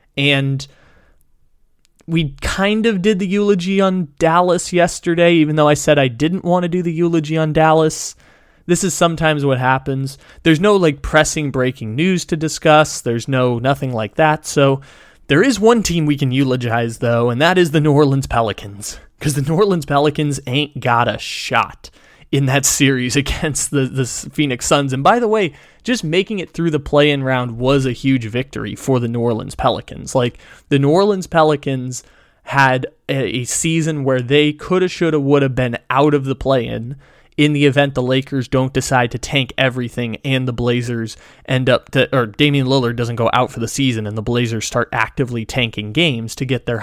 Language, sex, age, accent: English, male, 20-39, American